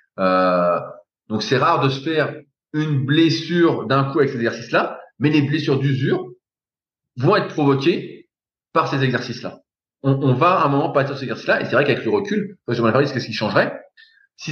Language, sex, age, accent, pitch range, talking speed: French, male, 30-49, French, 115-155 Hz, 195 wpm